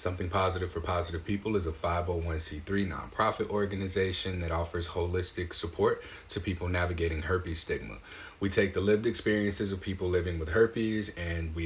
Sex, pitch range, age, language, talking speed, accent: male, 90-105 Hz, 30-49, English, 160 wpm, American